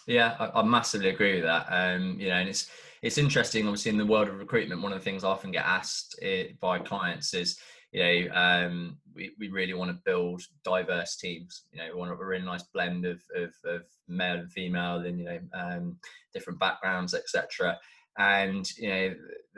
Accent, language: British, English